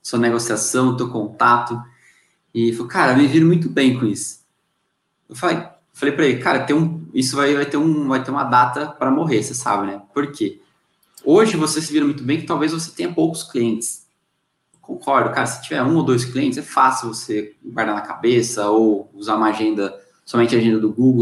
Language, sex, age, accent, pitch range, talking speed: Portuguese, male, 20-39, Brazilian, 120-155 Hz, 210 wpm